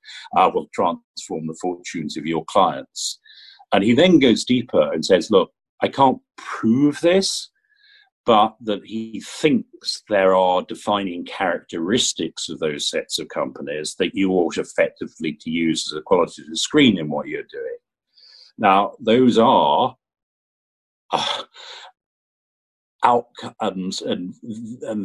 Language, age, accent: English, 50-69, British